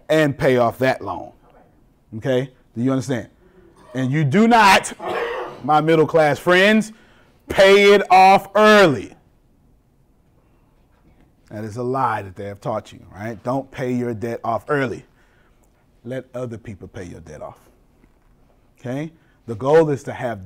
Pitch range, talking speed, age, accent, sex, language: 115-150 Hz, 145 wpm, 30-49, American, male, English